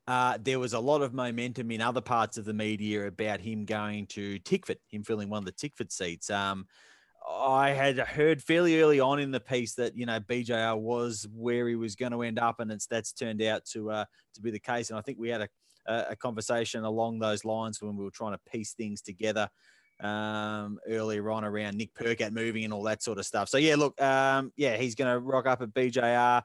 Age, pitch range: 30-49, 110-125 Hz